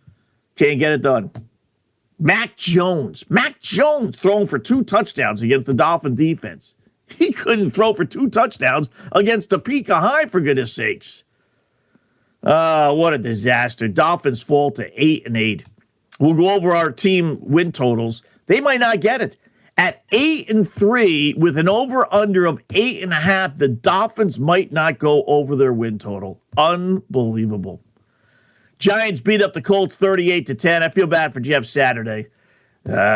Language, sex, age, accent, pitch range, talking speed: English, male, 50-69, American, 125-190 Hz, 160 wpm